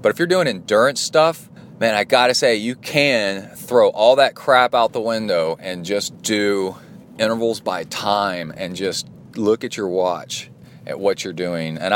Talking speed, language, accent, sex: 185 wpm, English, American, male